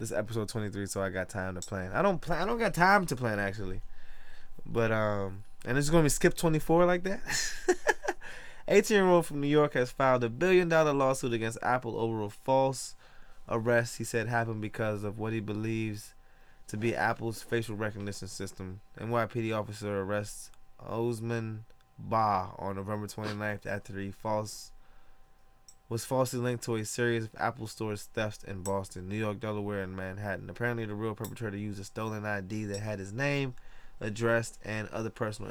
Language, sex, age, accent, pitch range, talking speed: English, male, 20-39, American, 105-125 Hz, 175 wpm